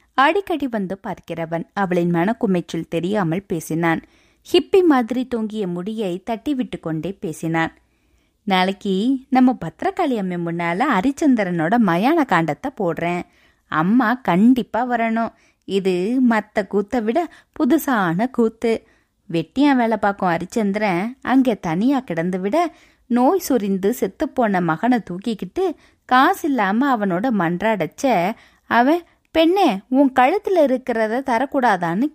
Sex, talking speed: female, 105 wpm